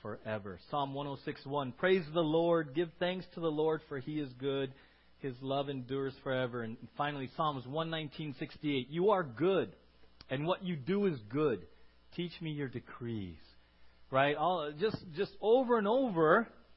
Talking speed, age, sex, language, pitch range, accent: 155 wpm, 40-59, male, English, 135-215 Hz, American